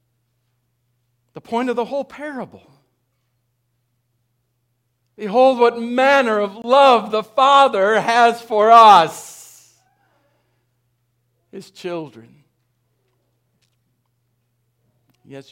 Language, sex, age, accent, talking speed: English, male, 60-79, American, 75 wpm